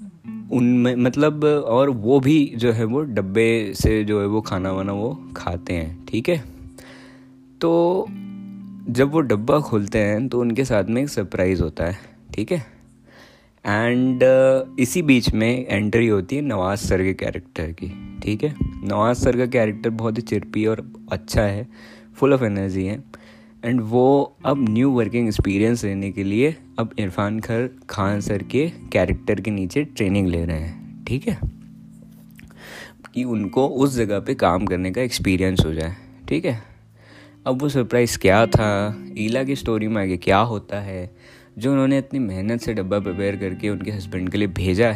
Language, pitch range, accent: Hindi, 100-125 Hz, native